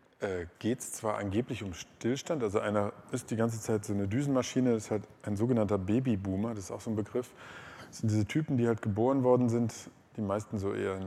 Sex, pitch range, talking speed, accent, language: male, 110-130 Hz, 215 wpm, German, German